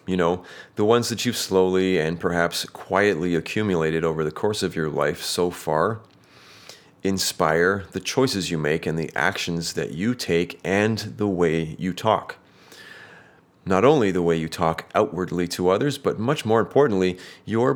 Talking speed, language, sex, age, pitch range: 165 wpm, English, male, 30-49, 85-105 Hz